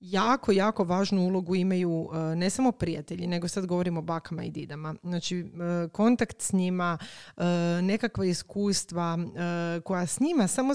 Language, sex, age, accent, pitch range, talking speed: Croatian, female, 30-49, native, 170-200 Hz, 140 wpm